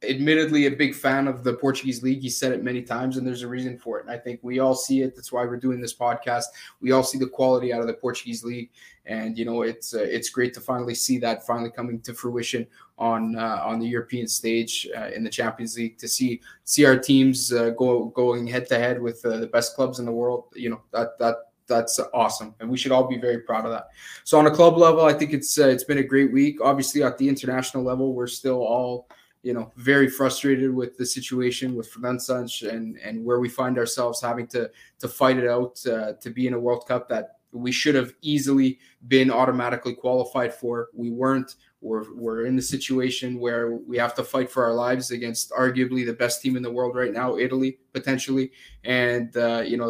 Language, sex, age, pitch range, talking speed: English, male, 20-39, 120-130 Hz, 230 wpm